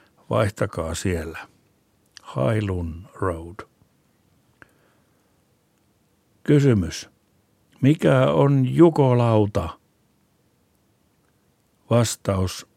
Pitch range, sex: 95-120 Hz, male